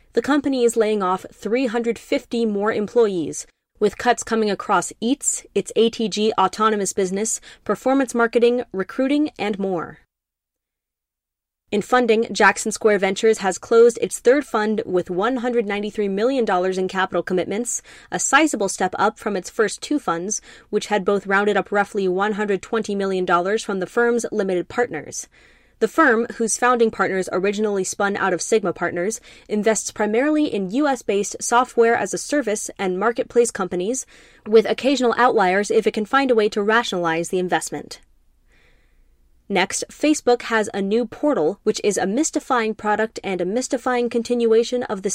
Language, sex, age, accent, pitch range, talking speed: English, female, 20-39, American, 195-240 Hz, 145 wpm